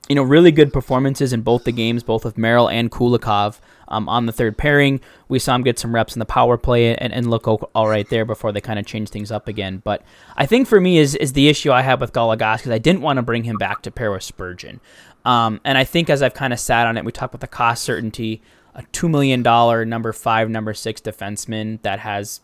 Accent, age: American, 20-39